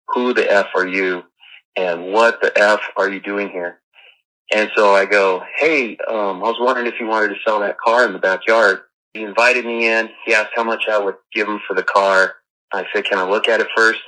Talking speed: 235 wpm